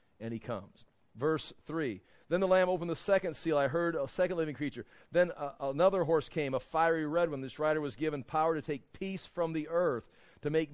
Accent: American